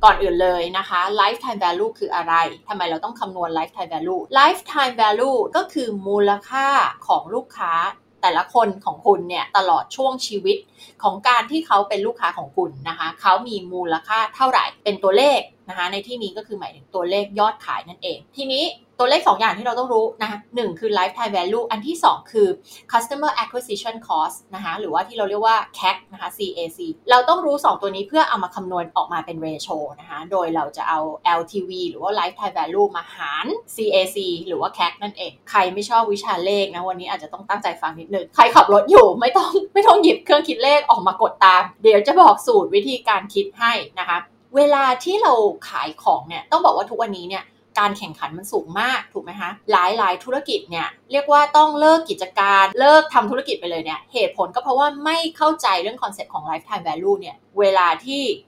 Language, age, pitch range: Thai, 20-39, 195-310 Hz